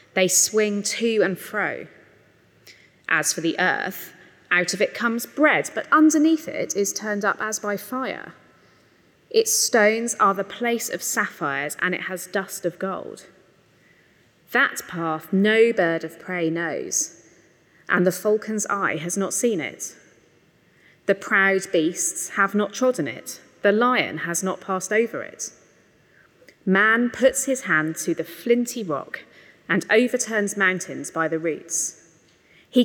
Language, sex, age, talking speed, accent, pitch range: English, female, 30-49, 145 wpm, British, 185-250 Hz